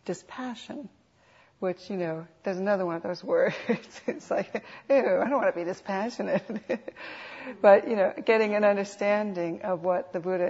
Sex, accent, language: female, American, English